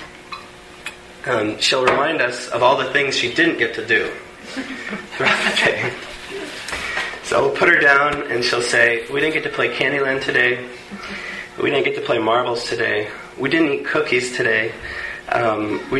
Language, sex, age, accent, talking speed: English, male, 30-49, American, 170 wpm